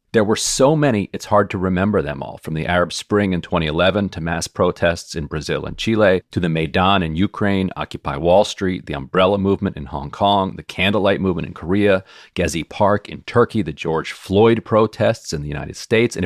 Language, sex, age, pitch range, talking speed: English, male, 40-59, 85-105 Hz, 205 wpm